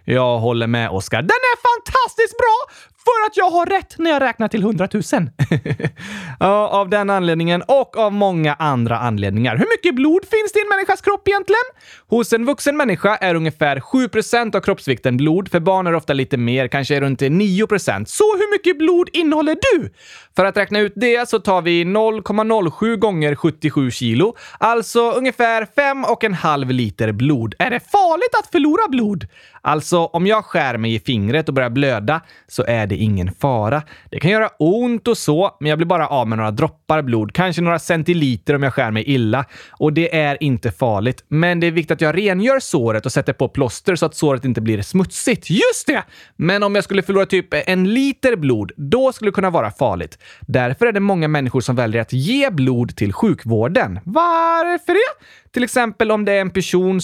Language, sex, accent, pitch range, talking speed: Swedish, male, native, 140-235 Hz, 195 wpm